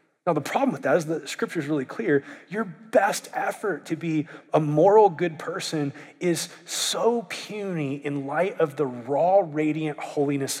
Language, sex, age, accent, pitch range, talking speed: English, male, 30-49, American, 145-210 Hz, 170 wpm